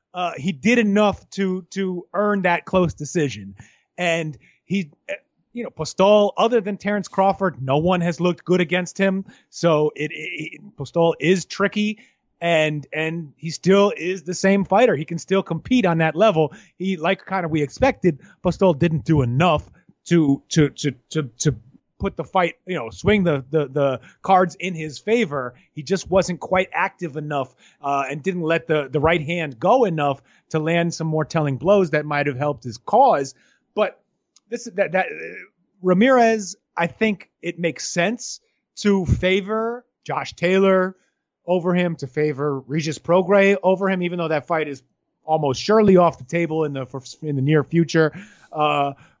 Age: 30-49